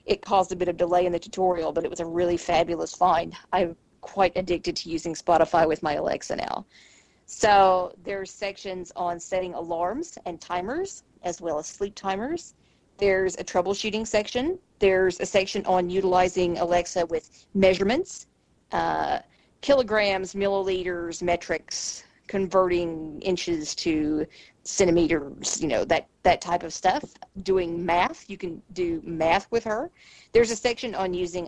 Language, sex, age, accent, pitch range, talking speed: English, female, 40-59, American, 175-215 Hz, 150 wpm